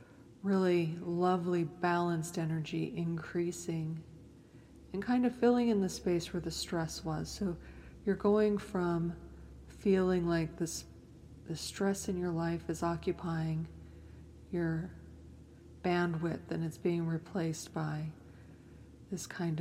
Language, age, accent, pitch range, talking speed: English, 40-59, American, 120-175 Hz, 120 wpm